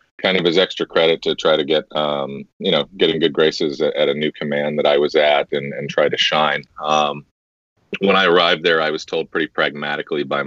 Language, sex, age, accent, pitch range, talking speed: English, male, 30-49, American, 75-85 Hz, 225 wpm